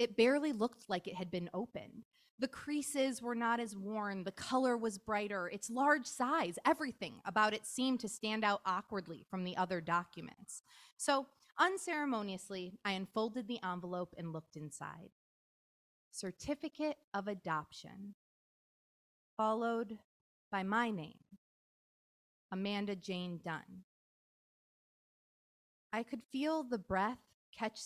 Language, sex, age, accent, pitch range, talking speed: English, female, 20-39, American, 195-255 Hz, 125 wpm